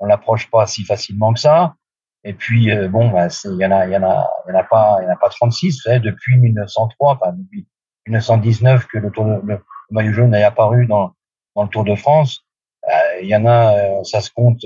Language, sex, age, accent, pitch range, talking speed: French, male, 40-59, French, 105-125 Hz, 215 wpm